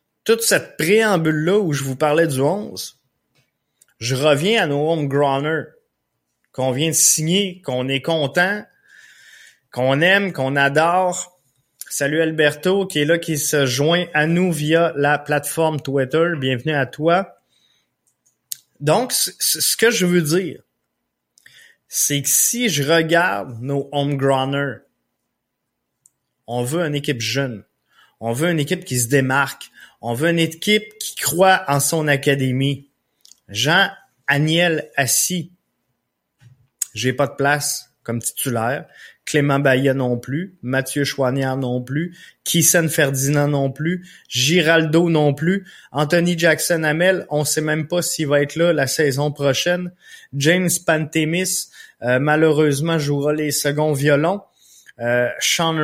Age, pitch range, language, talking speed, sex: 20-39, 140-170 Hz, French, 130 wpm, male